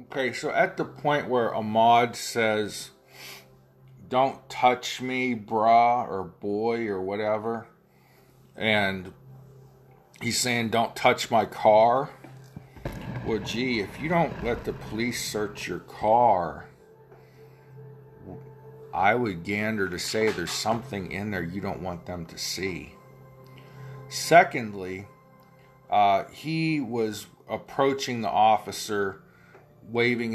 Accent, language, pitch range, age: American, English, 95-120 Hz, 40-59